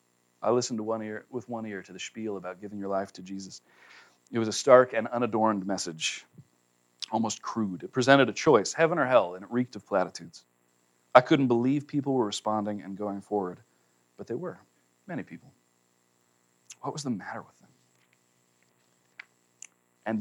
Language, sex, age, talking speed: English, male, 40-59, 175 wpm